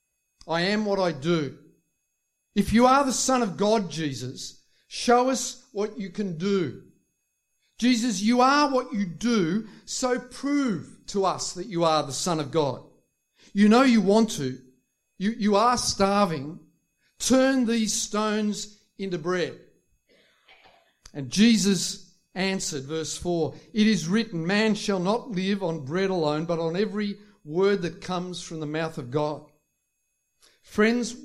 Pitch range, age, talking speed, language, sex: 160-215 Hz, 50-69, 150 wpm, English, male